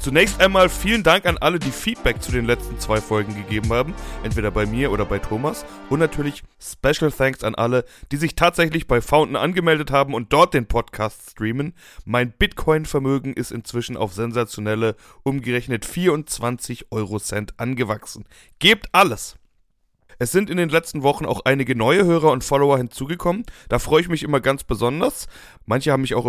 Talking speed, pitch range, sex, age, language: 175 wpm, 115-155 Hz, male, 30-49, German